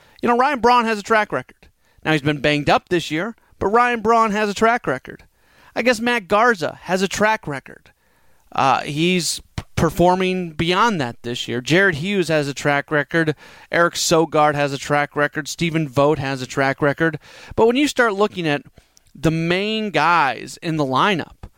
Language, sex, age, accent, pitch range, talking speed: English, male, 30-49, American, 155-205 Hz, 185 wpm